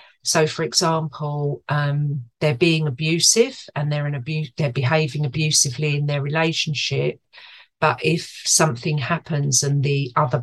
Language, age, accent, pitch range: English, 50-69, British, 140-160 Hz